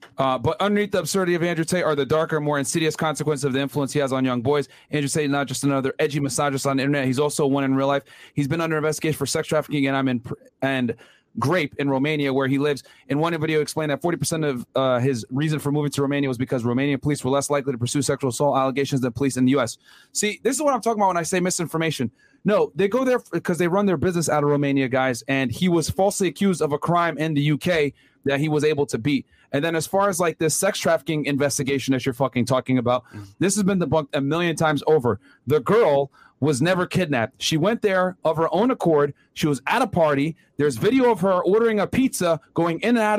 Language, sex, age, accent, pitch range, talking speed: English, male, 30-49, American, 140-190 Hz, 250 wpm